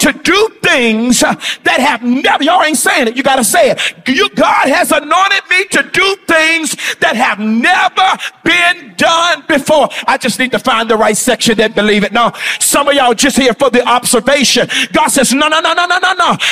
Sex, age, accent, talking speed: male, 50-69, American, 205 wpm